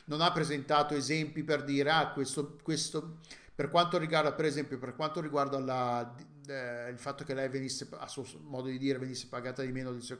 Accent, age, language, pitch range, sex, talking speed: native, 50-69, Italian, 130-160 Hz, male, 205 wpm